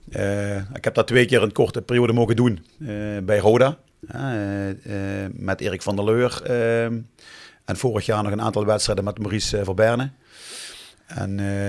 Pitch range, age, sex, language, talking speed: 100-115 Hz, 40-59, male, Dutch, 175 wpm